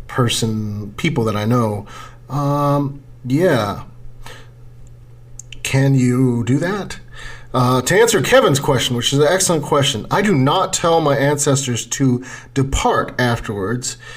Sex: male